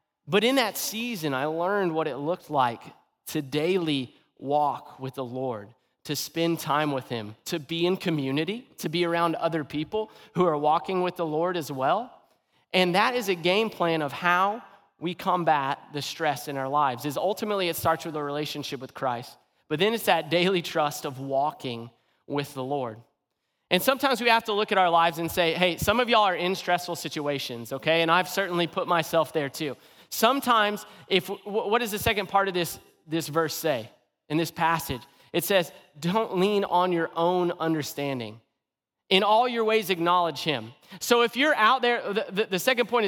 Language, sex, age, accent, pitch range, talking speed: English, male, 30-49, American, 150-210 Hz, 195 wpm